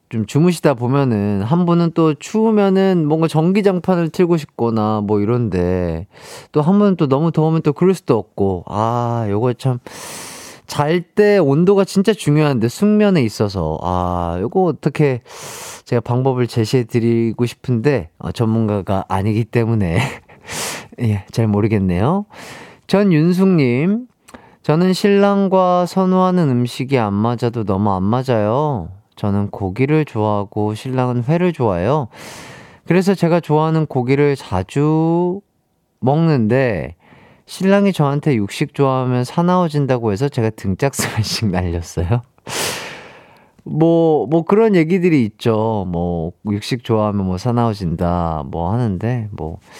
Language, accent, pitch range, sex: Korean, native, 105-170 Hz, male